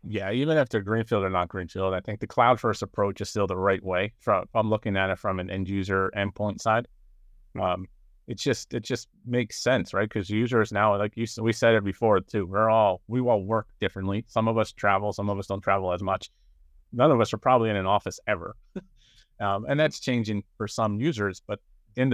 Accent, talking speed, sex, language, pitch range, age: American, 230 wpm, male, English, 95-115 Hz, 30-49